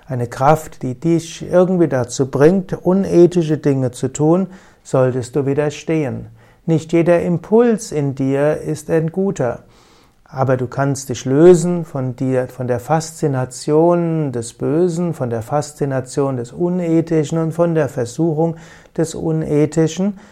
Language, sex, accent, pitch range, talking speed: German, male, German, 130-160 Hz, 130 wpm